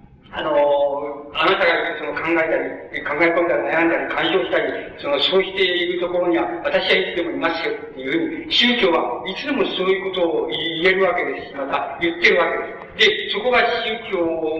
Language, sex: Japanese, male